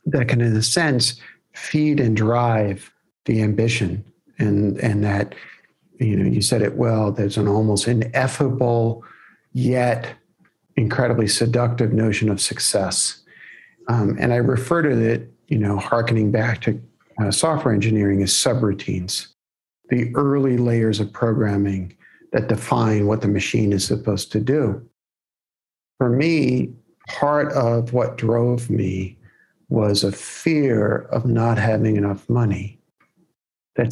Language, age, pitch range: English, 50-69, 105-120 Hz